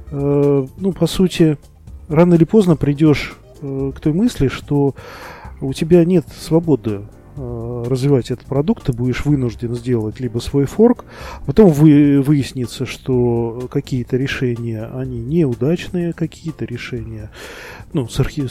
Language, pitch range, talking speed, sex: Russian, 125-155 Hz, 115 wpm, male